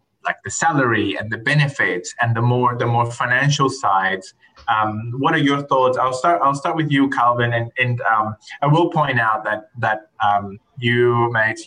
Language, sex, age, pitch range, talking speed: English, male, 20-39, 110-135 Hz, 190 wpm